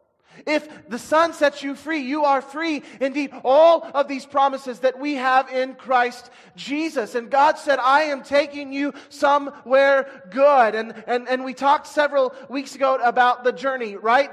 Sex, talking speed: male, 170 wpm